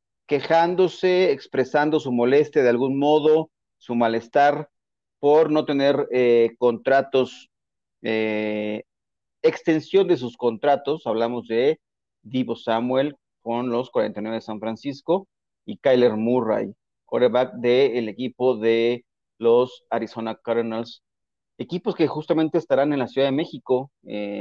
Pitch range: 115-140 Hz